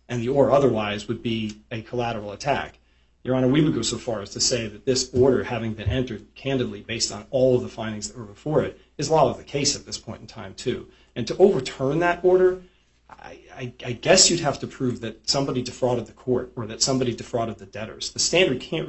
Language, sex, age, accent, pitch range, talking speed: English, male, 40-59, American, 110-135 Hz, 235 wpm